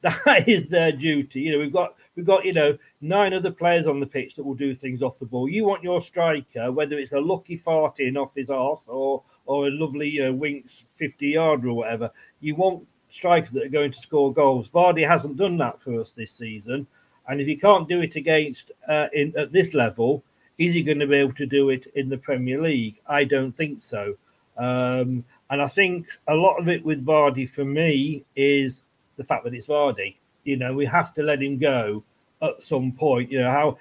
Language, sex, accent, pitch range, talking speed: English, male, British, 130-160 Hz, 225 wpm